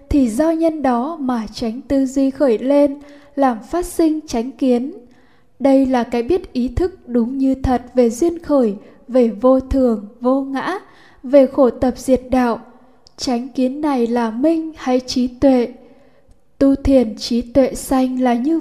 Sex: female